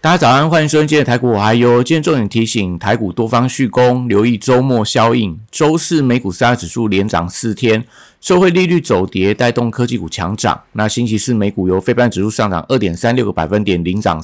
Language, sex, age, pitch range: Chinese, male, 50-69, 100-125 Hz